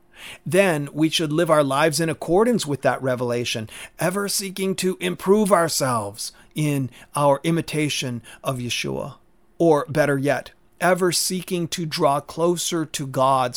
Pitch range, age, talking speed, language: 125-170 Hz, 40-59, 135 wpm, English